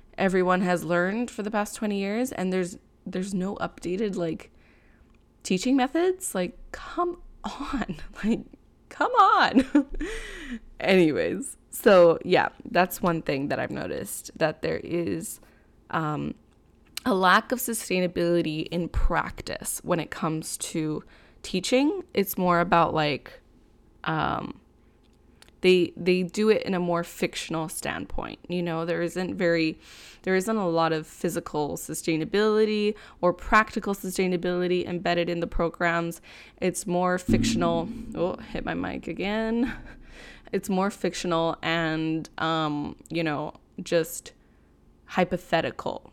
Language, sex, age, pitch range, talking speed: English, female, 20-39, 170-215 Hz, 125 wpm